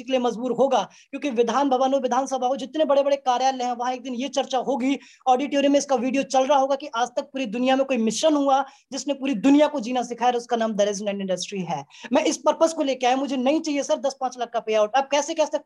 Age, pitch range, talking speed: 20-39, 250-300 Hz, 50 wpm